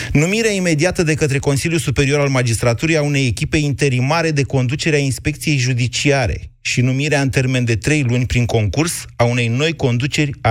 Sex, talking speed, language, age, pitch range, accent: male, 170 wpm, Romanian, 30-49, 115-145 Hz, native